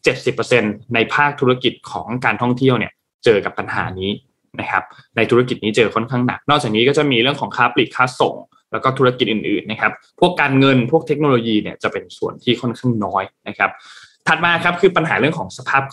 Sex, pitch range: male, 115-140 Hz